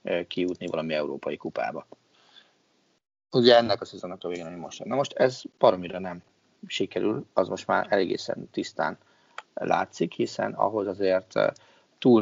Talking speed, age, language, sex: 135 wpm, 30-49, Hungarian, male